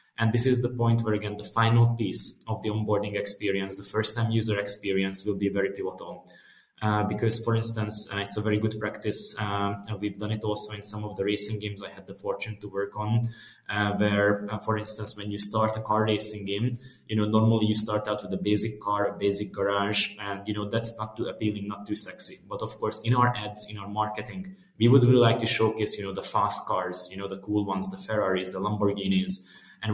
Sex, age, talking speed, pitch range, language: male, 20-39, 230 wpm, 100-110 Hz, English